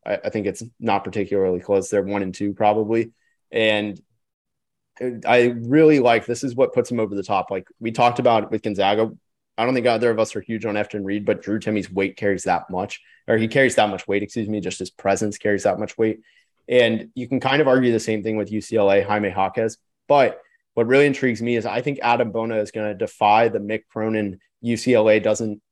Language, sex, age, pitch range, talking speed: English, male, 20-39, 105-125 Hz, 220 wpm